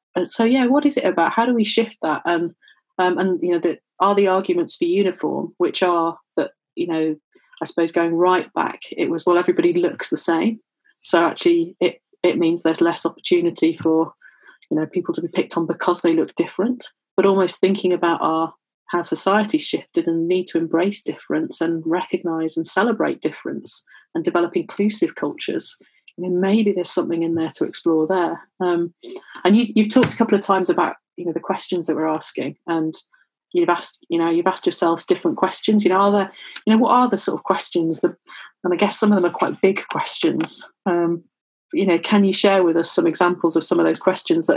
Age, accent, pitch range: 30-49, British, 170-215 Hz